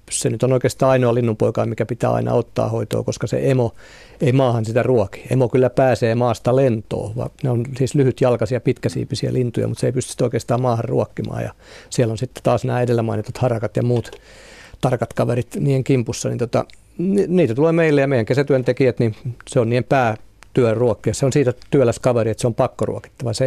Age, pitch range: 50-69, 115-130 Hz